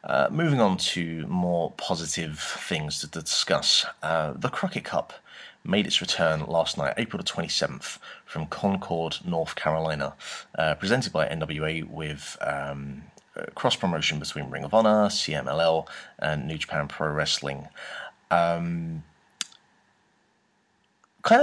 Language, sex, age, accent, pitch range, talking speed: English, male, 30-49, British, 75-95 Hz, 125 wpm